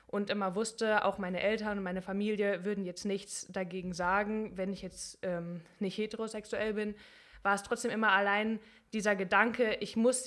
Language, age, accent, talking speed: German, 20-39, German, 175 wpm